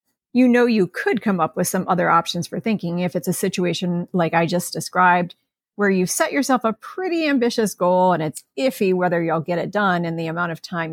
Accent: American